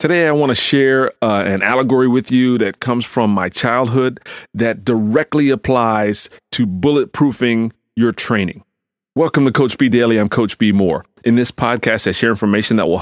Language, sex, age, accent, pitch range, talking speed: English, male, 30-49, American, 110-130 Hz, 180 wpm